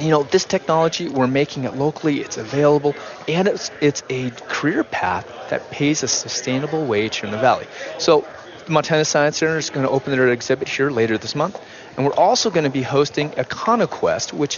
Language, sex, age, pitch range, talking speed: English, male, 30-49, 120-155 Hz, 200 wpm